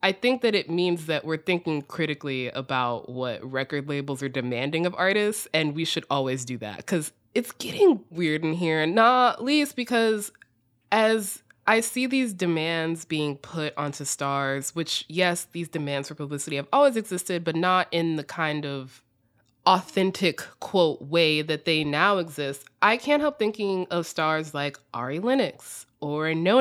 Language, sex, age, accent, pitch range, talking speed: English, female, 20-39, American, 160-240 Hz, 165 wpm